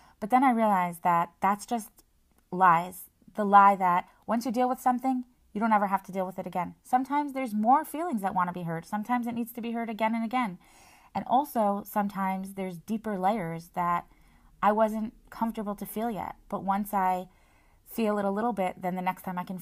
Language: English